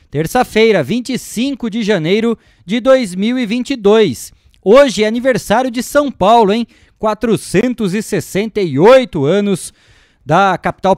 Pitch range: 185-235 Hz